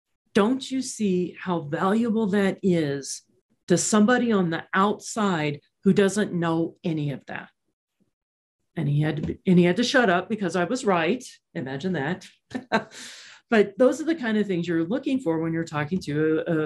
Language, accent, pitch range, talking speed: English, American, 160-220 Hz, 180 wpm